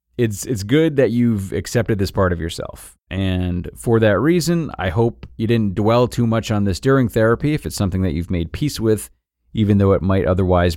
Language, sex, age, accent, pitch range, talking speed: English, male, 30-49, American, 90-115 Hz, 210 wpm